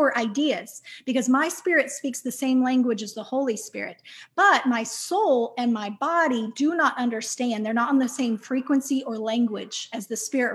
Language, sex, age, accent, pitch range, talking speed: English, female, 30-49, American, 230-280 Hz, 180 wpm